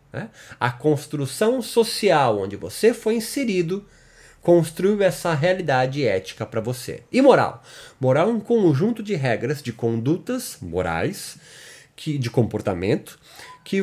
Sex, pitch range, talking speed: male, 120-170 Hz, 115 wpm